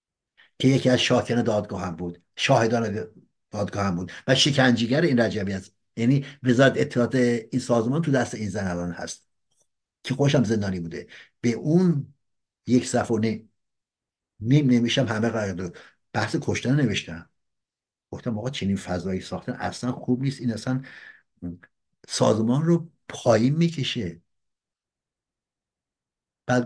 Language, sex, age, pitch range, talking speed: Persian, male, 60-79, 110-135 Hz, 135 wpm